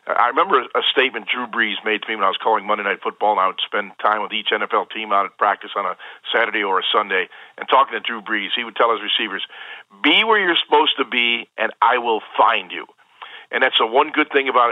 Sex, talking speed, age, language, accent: male, 255 wpm, 50-69, English, American